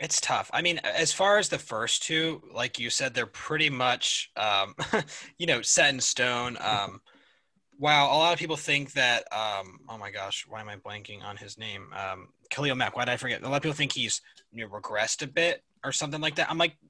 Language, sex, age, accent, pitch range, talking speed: English, male, 20-39, American, 120-155 Hz, 225 wpm